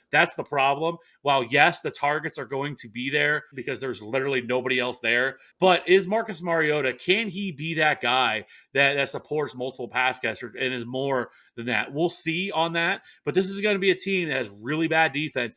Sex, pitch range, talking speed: male, 130-165 Hz, 210 wpm